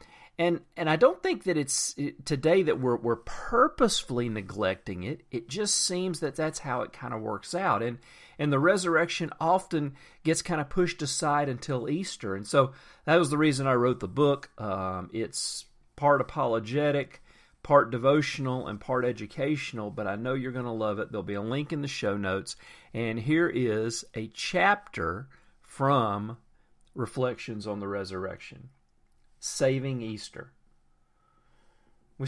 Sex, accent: male, American